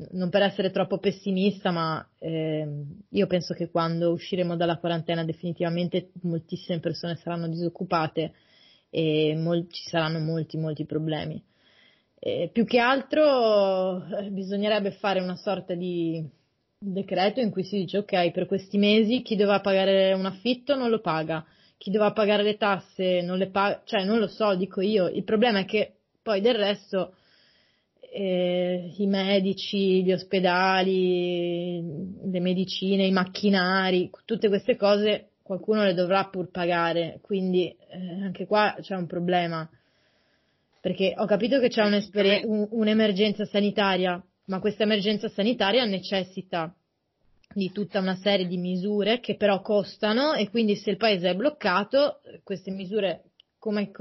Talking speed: 145 wpm